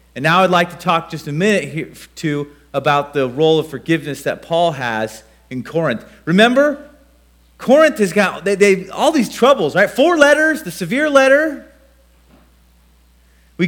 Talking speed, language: 160 wpm, English